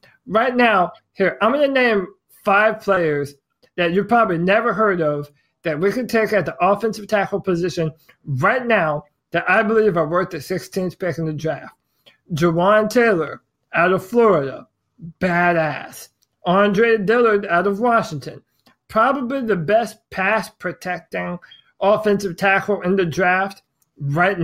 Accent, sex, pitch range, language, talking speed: American, male, 165-210 Hz, English, 140 wpm